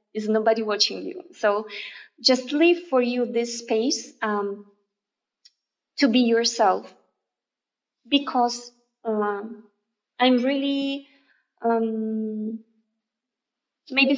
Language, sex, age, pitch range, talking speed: English, female, 20-39, 220-270 Hz, 90 wpm